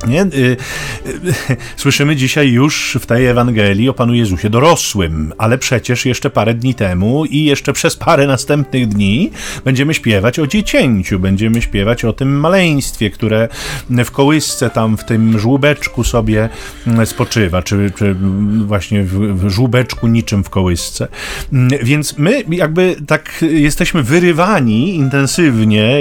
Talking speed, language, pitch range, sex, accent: 125 wpm, Polish, 110-150 Hz, male, native